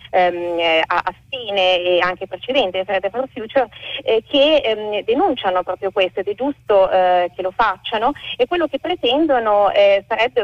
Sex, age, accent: female, 30-49, native